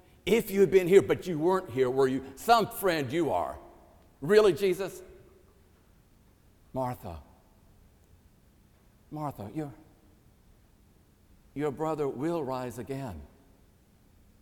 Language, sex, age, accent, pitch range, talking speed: English, male, 60-79, American, 120-175 Hz, 105 wpm